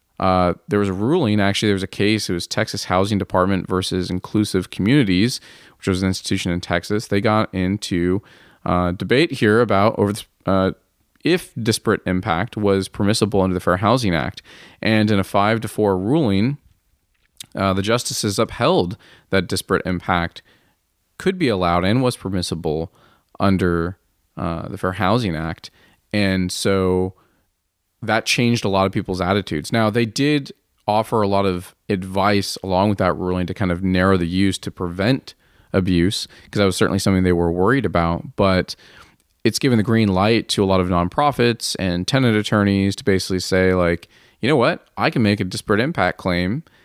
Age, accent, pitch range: 20-39, American, 90-110 Hz